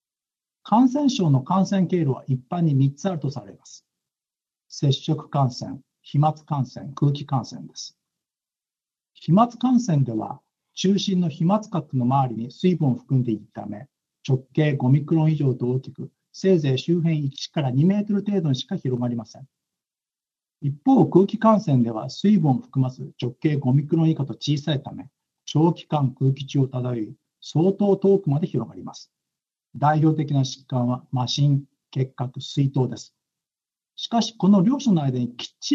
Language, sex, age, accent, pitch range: Japanese, male, 60-79, native, 130-175 Hz